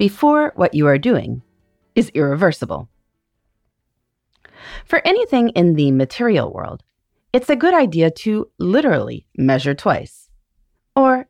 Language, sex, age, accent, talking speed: English, female, 30-49, American, 115 wpm